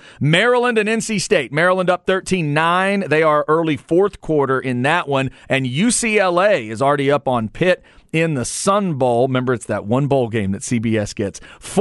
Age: 40-59